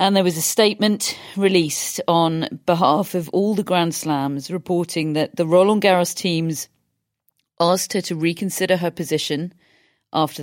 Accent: British